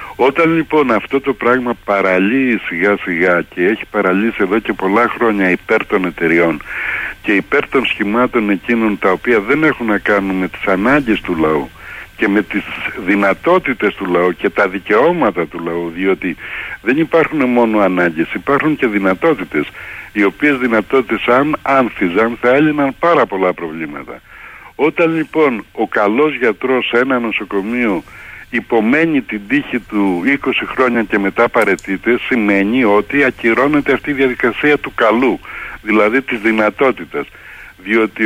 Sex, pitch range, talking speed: male, 100-140 Hz, 145 wpm